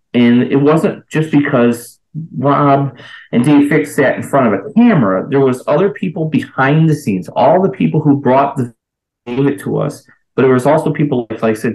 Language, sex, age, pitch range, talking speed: English, male, 30-49, 115-145 Hz, 205 wpm